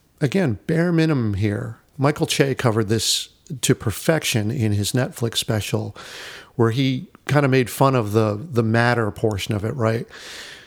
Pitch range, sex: 110-150 Hz, male